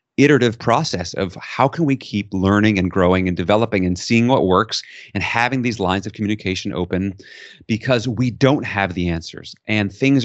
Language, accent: English, American